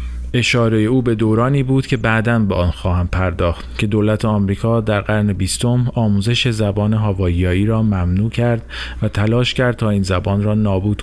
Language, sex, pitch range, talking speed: Persian, male, 95-125 Hz, 170 wpm